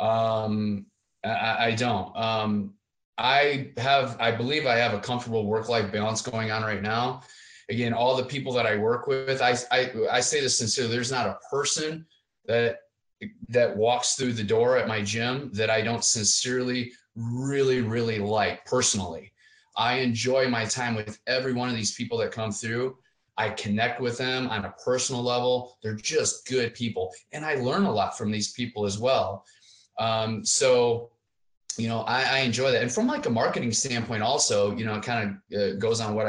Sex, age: male, 30-49